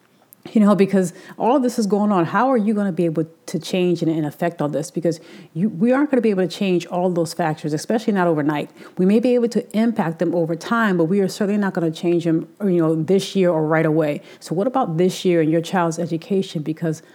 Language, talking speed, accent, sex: English, 260 wpm, American, female